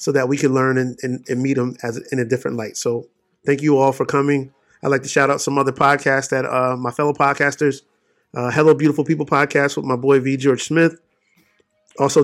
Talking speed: 225 wpm